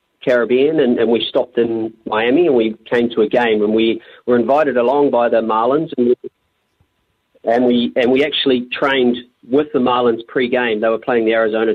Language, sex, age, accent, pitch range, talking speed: English, male, 40-59, Australian, 110-130 Hz, 195 wpm